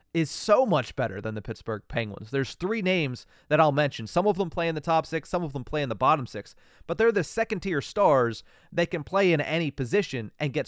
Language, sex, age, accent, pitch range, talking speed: English, male, 30-49, American, 125-175 Hz, 240 wpm